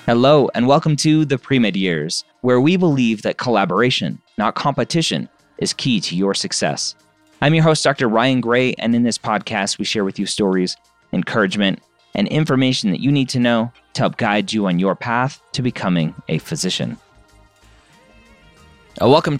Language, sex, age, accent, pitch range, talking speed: English, male, 30-49, American, 90-130 Hz, 165 wpm